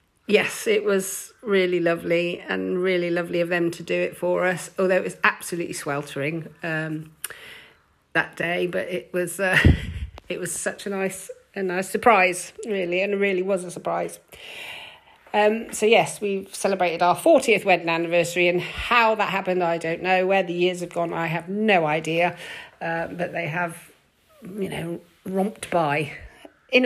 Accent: British